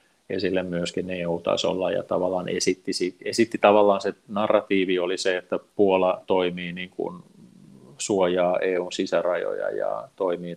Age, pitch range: 30-49, 90-110 Hz